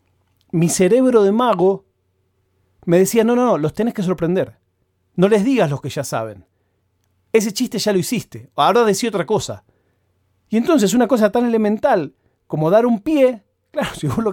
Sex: male